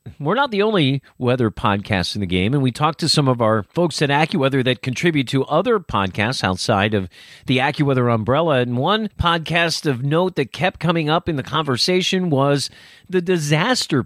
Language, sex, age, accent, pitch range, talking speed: English, male, 40-59, American, 115-160 Hz, 190 wpm